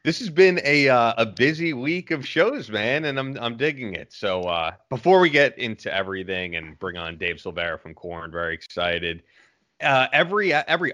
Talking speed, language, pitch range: 195 wpm, English, 90-125 Hz